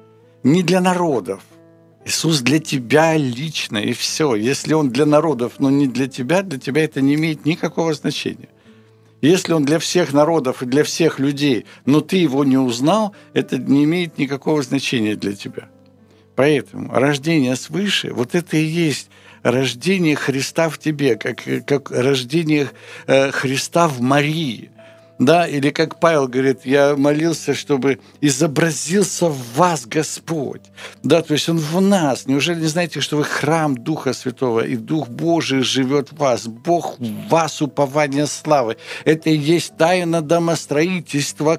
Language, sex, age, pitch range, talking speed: Ukrainian, male, 60-79, 135-165 Hz, 150 wpm